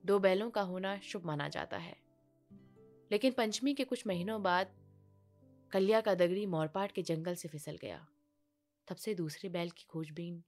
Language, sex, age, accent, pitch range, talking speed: Hindi, female, 20-39, native, 170-250 Hz, 165 wpm